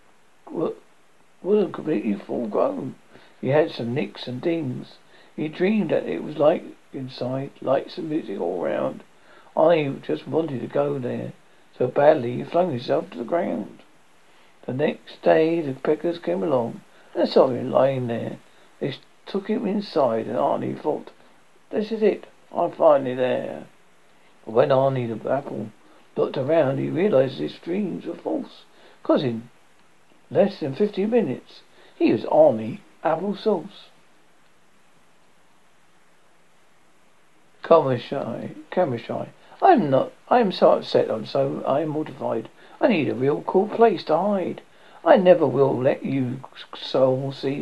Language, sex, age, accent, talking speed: English, male, 60-79, British, 140 wpm